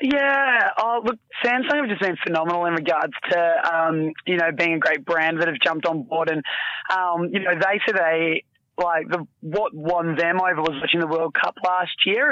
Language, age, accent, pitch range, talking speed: English, 20-39, Australian, 165-185 Hz, 210 wpm